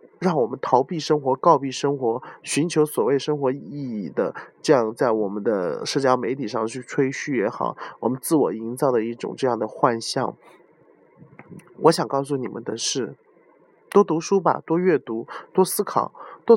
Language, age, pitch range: Chinese, 20-39, 120-160 Hz